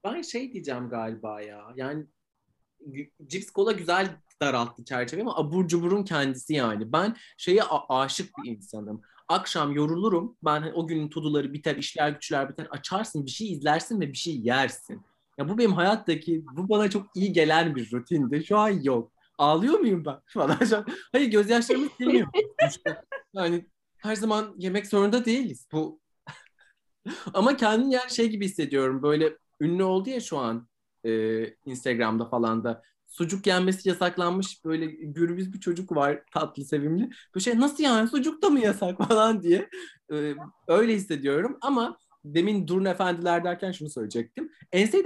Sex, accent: male, native